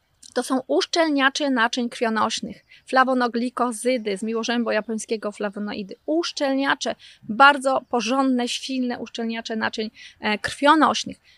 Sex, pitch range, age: female, 220-275 Hz, 20-39